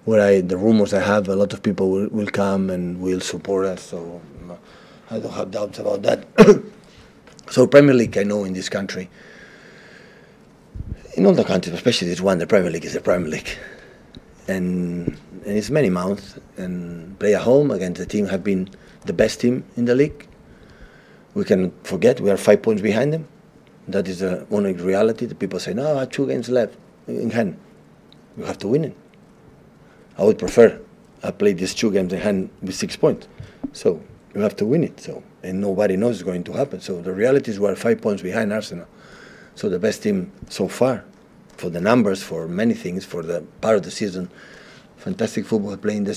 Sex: male